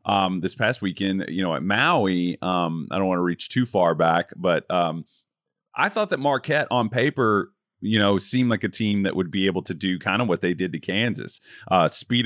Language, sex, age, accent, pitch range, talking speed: English, male, 30-49, American, 95-125 Hz, 225 wpm